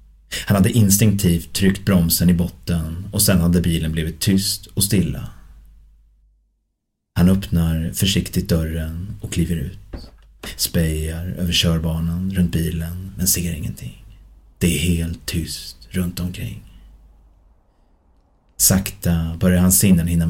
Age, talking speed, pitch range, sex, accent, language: 30-49, 120 wpm, 80-95 Hz, male, native, Swedish